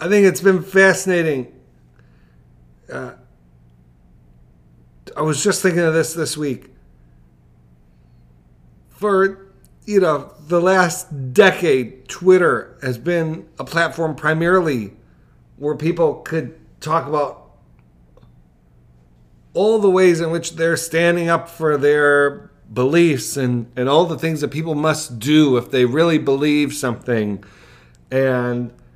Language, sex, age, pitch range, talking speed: English, male, 50-69, 105-160 Hz, 120 wpm